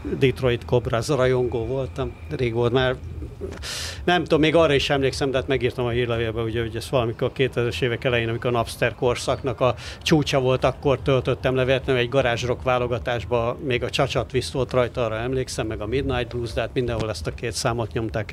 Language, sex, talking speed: Hungarian, male, 195 wpm